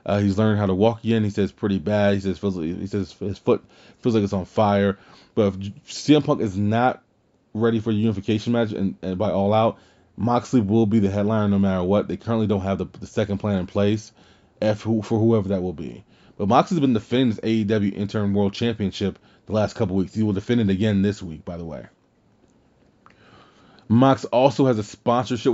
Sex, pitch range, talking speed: male, 95-110 Hz, 220 wpm